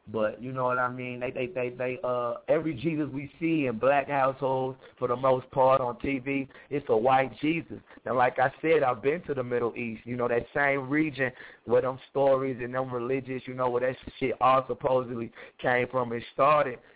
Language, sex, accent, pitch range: English, male, American, 120-140 Hz